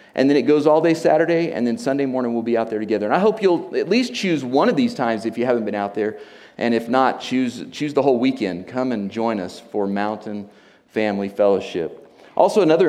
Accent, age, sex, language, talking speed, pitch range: American, 40-59, male, English, 235 wpm, 120-165 Hz